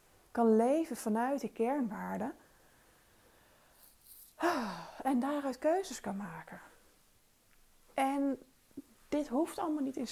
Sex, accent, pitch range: female, Dutch, 220-265 Hz